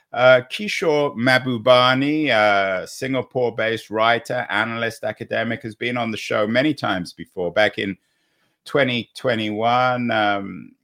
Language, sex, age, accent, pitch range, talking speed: English, male, 50-69, British, 110-135 Hz, 115 wpm